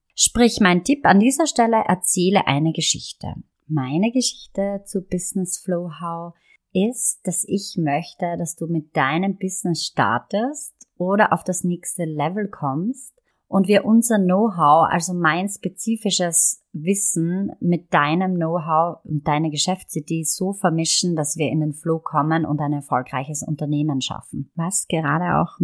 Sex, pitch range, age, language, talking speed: female, 155-190 Hz, 30-49, German, 145 wpm